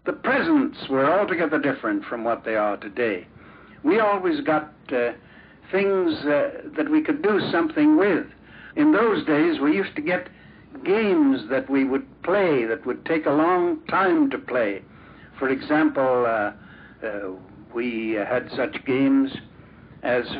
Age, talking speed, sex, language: 60-79, 150 wpm, male, English